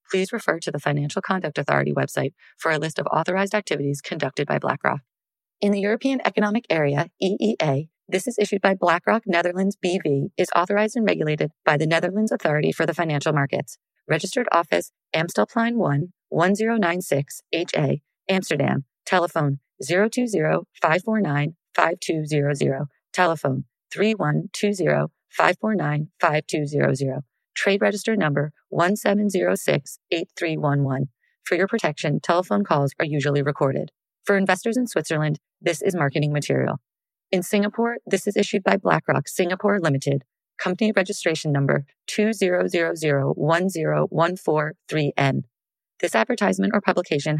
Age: 30-49